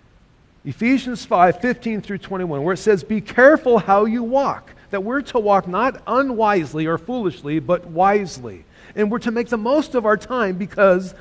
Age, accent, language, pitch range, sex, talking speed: 40-59, American, English, 175-230 Hz, male, 175 wpm